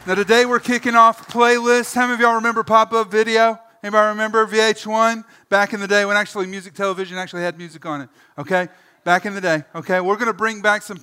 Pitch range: 155-200 Hz